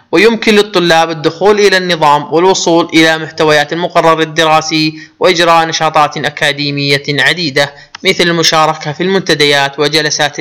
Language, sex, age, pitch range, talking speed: Arabic, male, 20-39, 145-170 Hz, 110 wpm